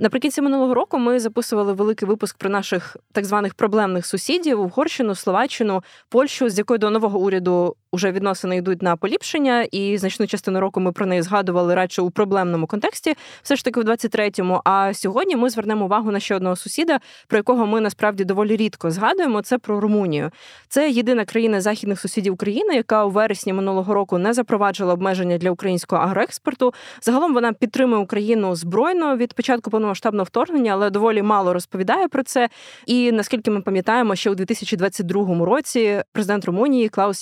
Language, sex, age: Ukrainian, female, 20-39